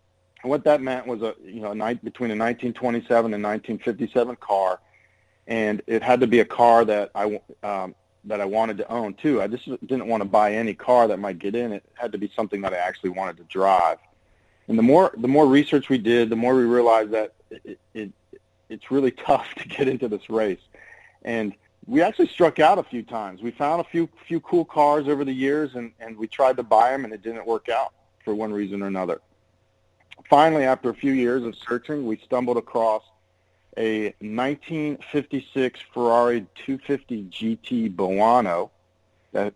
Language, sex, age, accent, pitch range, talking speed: English, male, 40-59, American, 105-130 Hz, 195 wpm